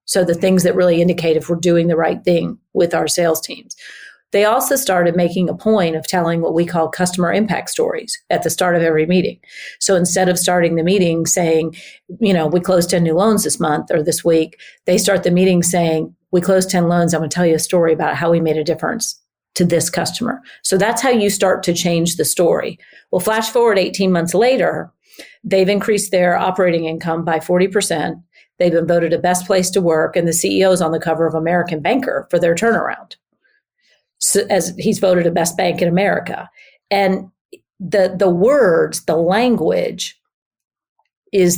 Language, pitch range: English, 170-195 Hz